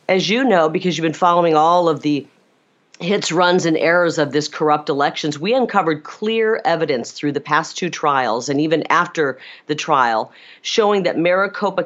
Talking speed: 175 wpm